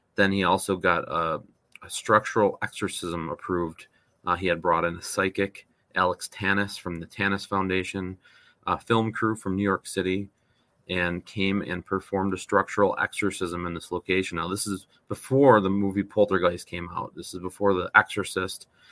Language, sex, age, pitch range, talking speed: English, male, 30-49, 90-100 Hz, 170 wpm